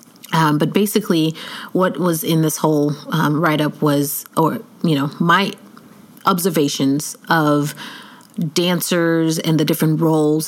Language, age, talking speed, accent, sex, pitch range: English, 30-49, 130 wpm, American, female, 160-230 Hz